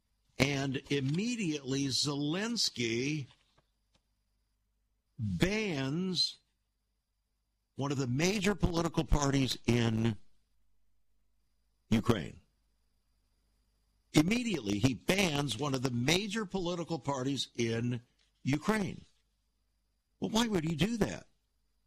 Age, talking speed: 60-79, 80 wpm